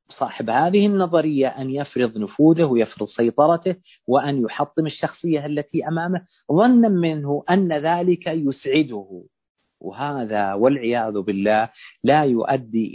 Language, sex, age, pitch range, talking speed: Arabic, male, 40-59, 115-160 Hz, 105 wpm